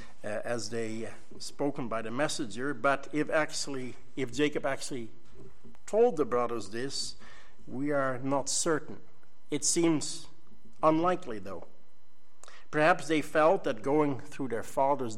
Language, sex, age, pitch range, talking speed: English, male, 60-79, 120-150 Hz, 130 wpm